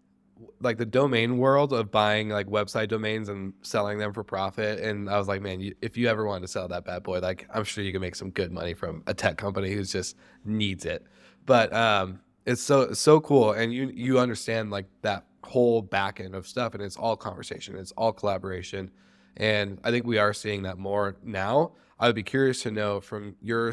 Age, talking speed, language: 20-39, 220 wpm, English